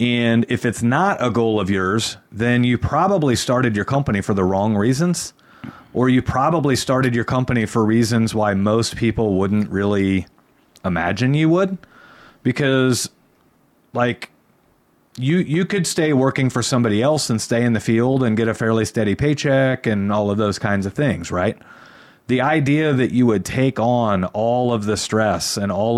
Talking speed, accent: 175 wpm, American